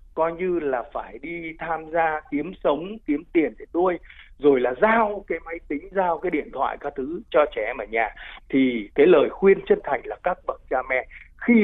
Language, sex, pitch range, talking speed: Vietnamese, male, 155-250 Hz, 215 wpm